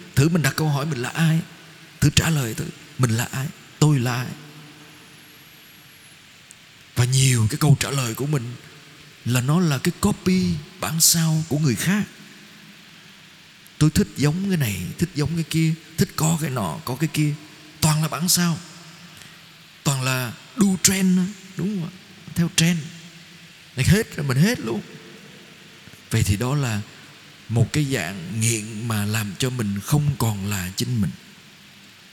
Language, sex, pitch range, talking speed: Vietnamese, male, 135-175 Hz, 165 wpm